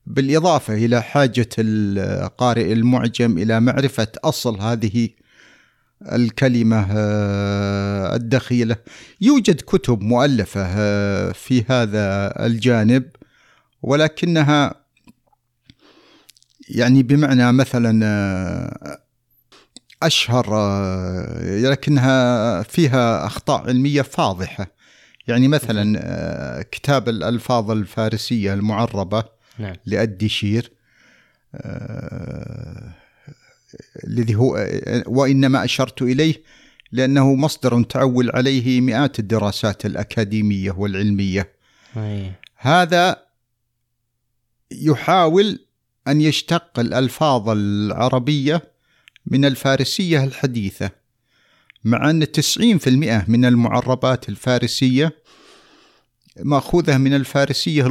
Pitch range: 110-135 Hz